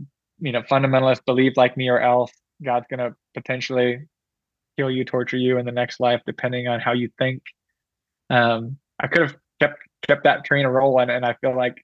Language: English